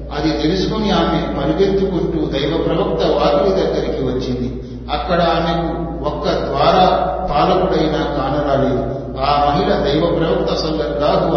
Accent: native